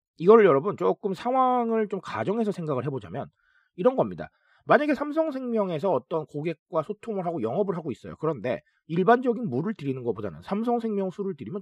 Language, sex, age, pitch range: Korean, male, 40-59, 150-235 Hz